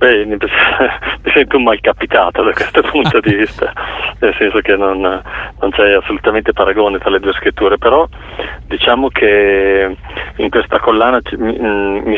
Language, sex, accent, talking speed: Italian, male, native, 155 wpm